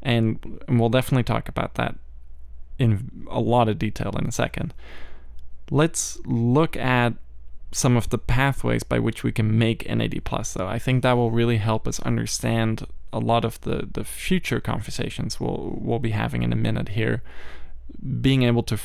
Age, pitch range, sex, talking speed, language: 20-39, 100-120 Hz, male, 175 wpm, English